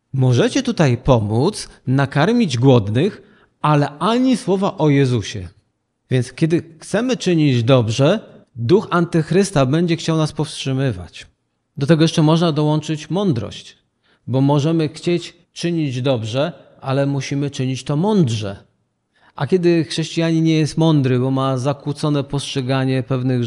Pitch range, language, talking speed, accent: 130-175 Hz, Polish, 125 wpm, native